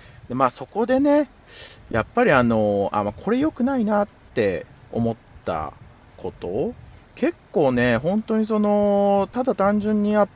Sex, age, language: male, 30-49, Japanese